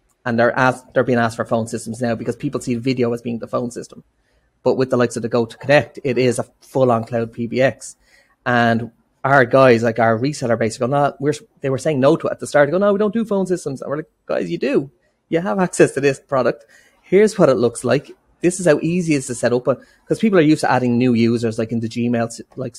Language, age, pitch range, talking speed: English, 30-49, 115-140 Hz, 255 wpm